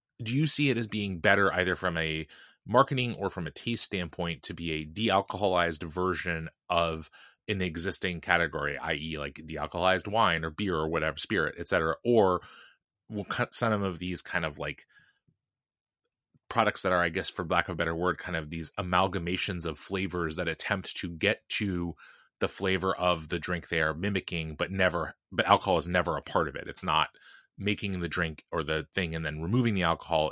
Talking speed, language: 200 wpm, English